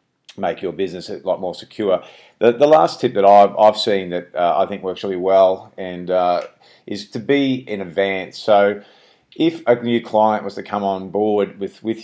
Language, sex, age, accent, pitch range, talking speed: English, male, 40-59, Australian, 95-110 Hz, 205 wpm